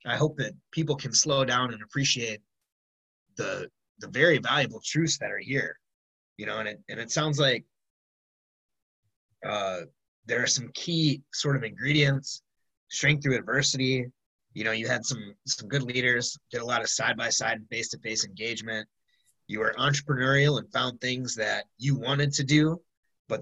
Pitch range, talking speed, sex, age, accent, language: 115-140 Hz, 165 wpm, male, 20-39, American, English